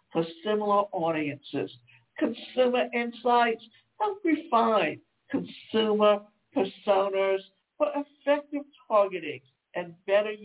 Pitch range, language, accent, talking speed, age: 210-295 Hz, English, American, 80 wpm, 60-79